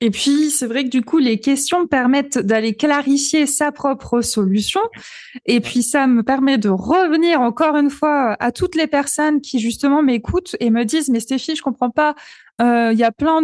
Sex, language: female, French